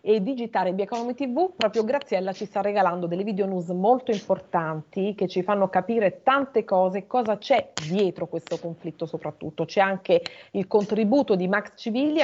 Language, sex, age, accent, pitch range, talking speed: Italian, female, 40-59, native, 180-245 Hz, 160 wpm